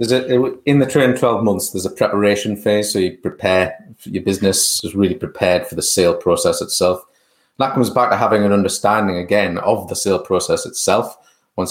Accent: British